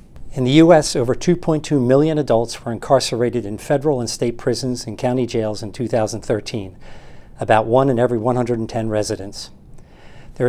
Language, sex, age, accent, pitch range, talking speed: English, male, 50-69, American, 115-140 Hz, 150 wpm